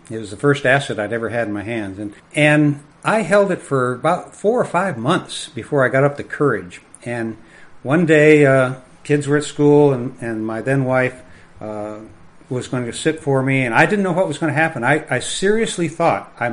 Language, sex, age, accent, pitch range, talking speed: English, male, 60-79, American, 115-150 Hz, 225 wpm